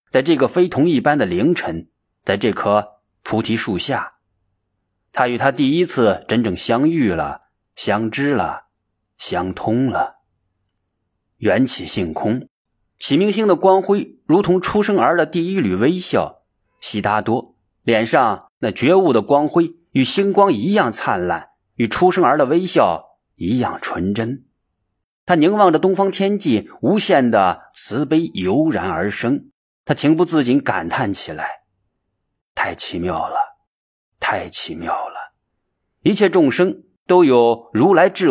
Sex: male